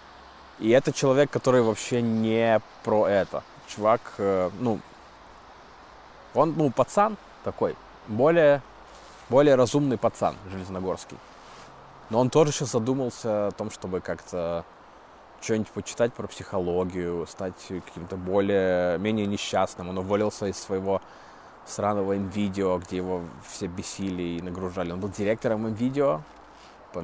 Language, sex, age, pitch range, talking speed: Russian, male, 20-39, 95-120 Hz, 120 wpm